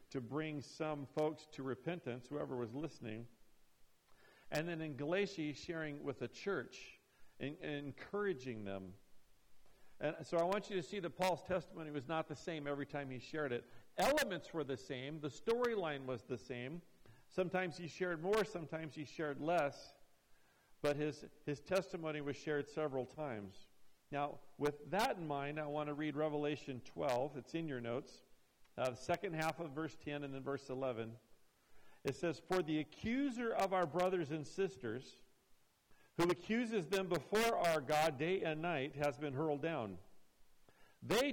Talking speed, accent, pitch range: 170 wpm, American, 140-170 Hz